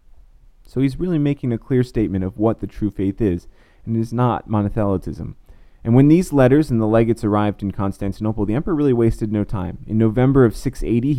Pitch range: 100-125 Hz